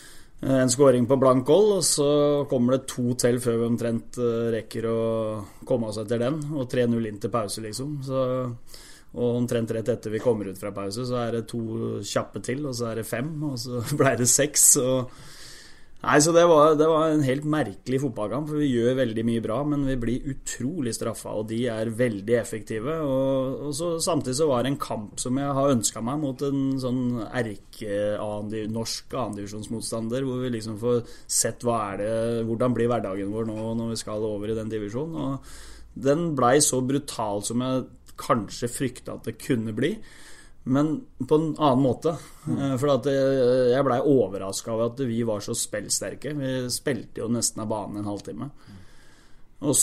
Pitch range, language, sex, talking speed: 110-130 Hz, English, male, 185 wpm